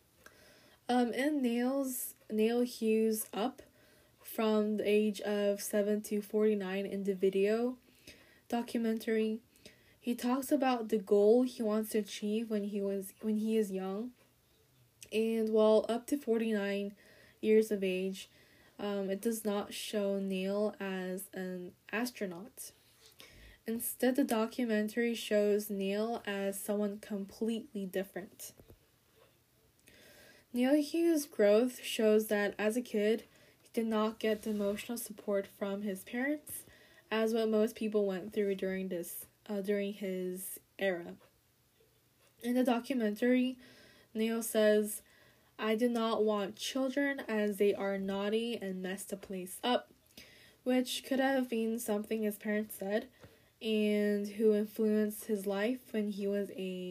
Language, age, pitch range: Korean, 10-29, 200-230 Hz